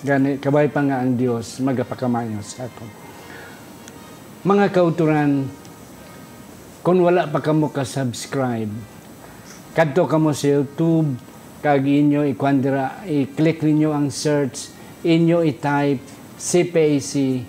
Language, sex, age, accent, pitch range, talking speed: Filipino, male, 50-69, native, 125-150 Hz, 105 wpm